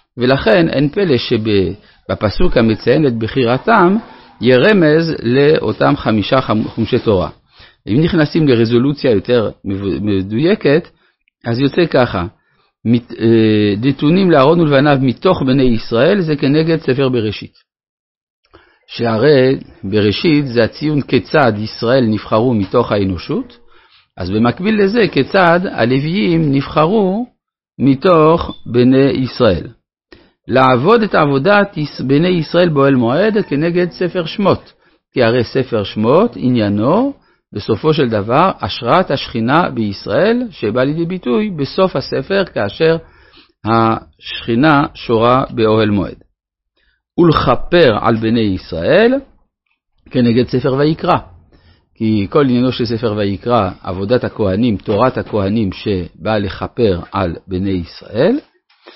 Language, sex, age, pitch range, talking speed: Hebrew, male, 50-69, 110-155 Hz, 105 wpm